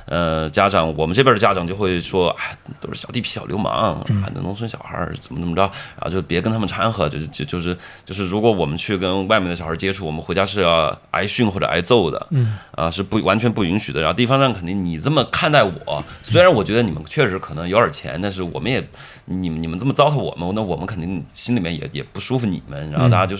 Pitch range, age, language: 85-115 Hz, 30-49, Chinese